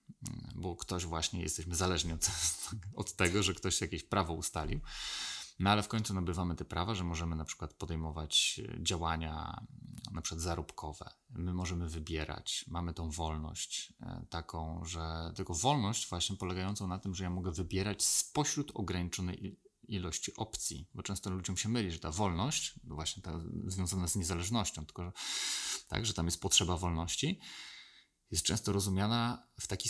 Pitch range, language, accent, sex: 85-105 Hz, Polish, native, male